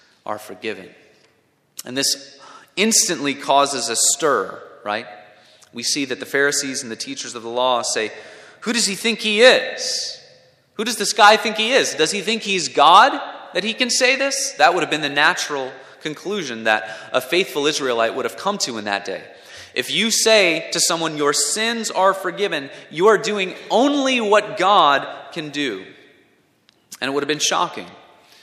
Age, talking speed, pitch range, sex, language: 30-49, 180 wpm, 125-195 Hz, male, English